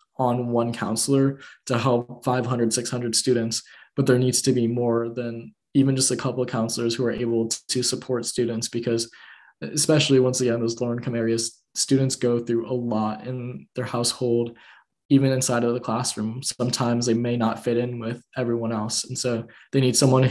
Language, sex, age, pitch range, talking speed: English, male, 20-39, 115-130 Hz, 185 wpm